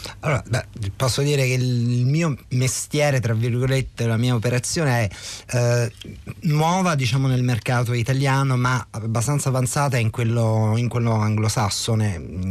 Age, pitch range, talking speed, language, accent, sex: 30-49, 110-130 Hz, 125 wpm, Italian, native, male